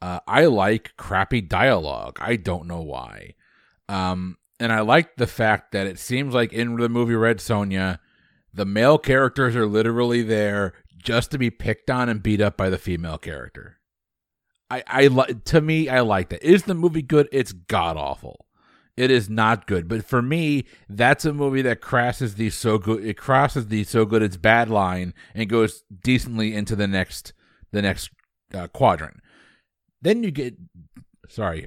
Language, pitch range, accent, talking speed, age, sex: English, 95-130 Hz, American, 175 wpm, 40-59, male